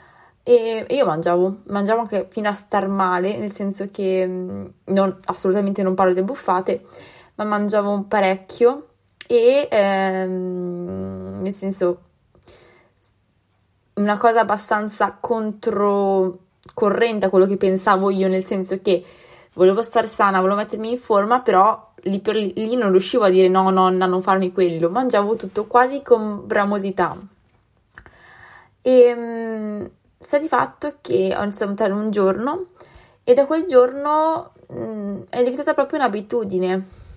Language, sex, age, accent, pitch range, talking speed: Italian, female, 20-39, native, 190-240 Hz, 135 wpm